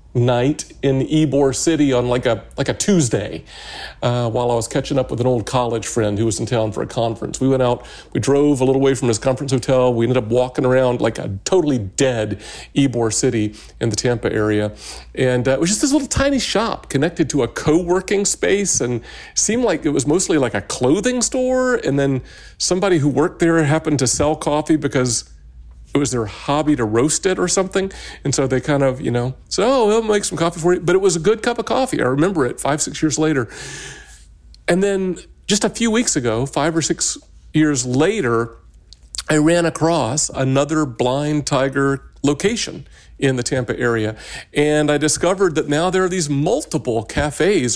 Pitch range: 120-165 Hz